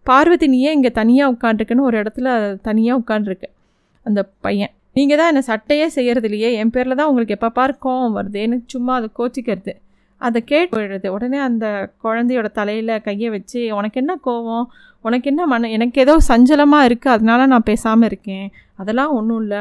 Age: 20-39